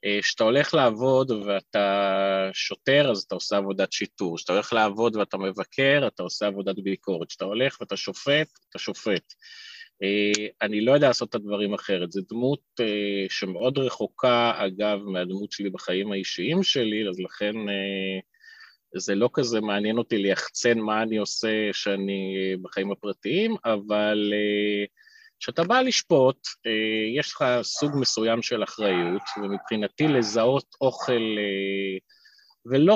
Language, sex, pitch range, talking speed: Hebrew, male, 100-140 Hz, 125 wpm